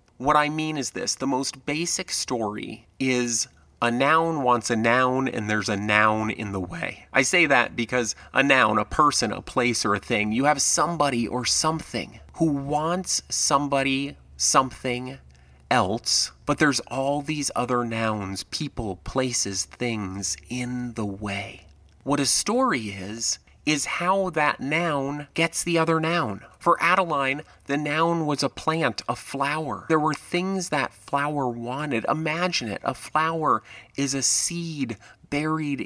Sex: male